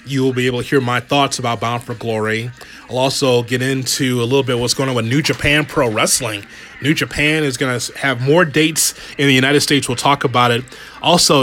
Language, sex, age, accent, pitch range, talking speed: English, male, 30-49, American, 125-150 Hz, 230 wpm